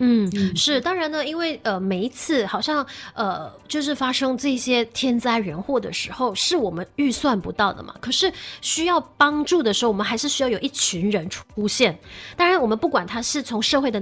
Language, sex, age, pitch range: Chinese, female, 20-39, 210-275 Hz